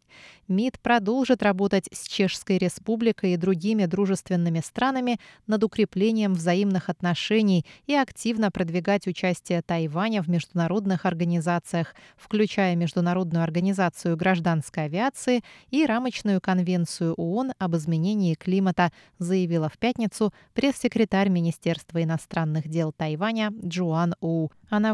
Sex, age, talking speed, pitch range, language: female, 20-39, 110 wpm, 175-215 Hz, Russian